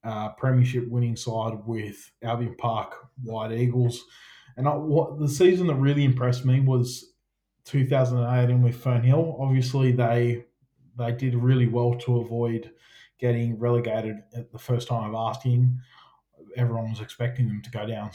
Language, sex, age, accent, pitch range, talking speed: English, male, 20-39, Australian, 115-130 Hz, 155 wpm